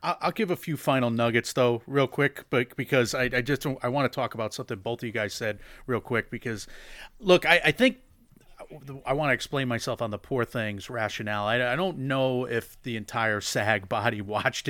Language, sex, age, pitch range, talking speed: English, male, 40-59, 110-140 Hz, 205 wpm